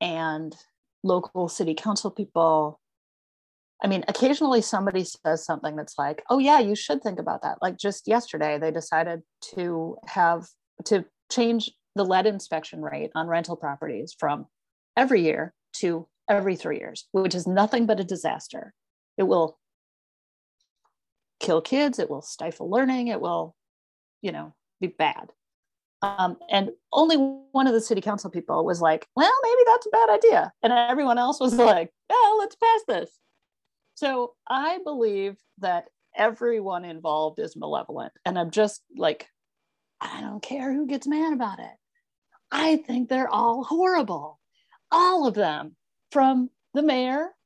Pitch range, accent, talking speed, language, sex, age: 170-270 Hz, American, 150 wpm, English, female, 30-49